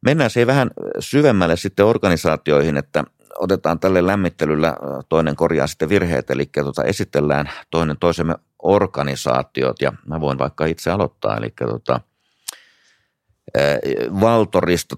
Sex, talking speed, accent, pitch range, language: male, 110 wpm, native, 70-85 Hz, Finnish